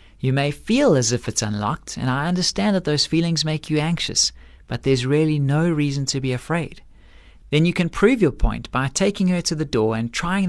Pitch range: 120-175 Hz